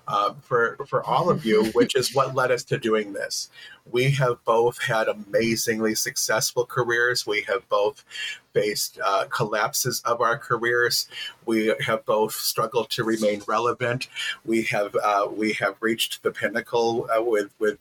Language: English